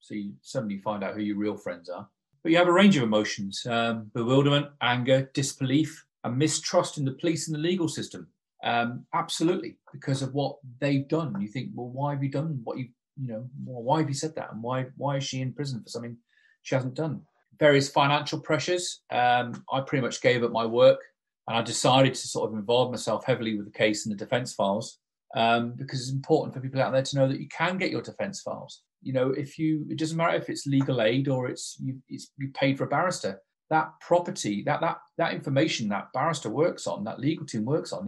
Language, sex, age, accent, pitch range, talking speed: English, male, 40-59, British, 120-155 Hz, 225 wpm